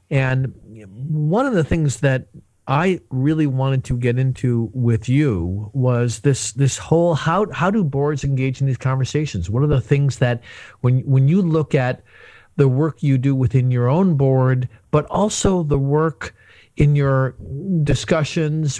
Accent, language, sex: American, English, male